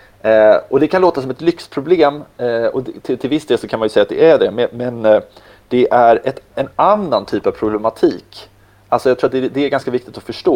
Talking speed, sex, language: 260 wpm, male, Swedish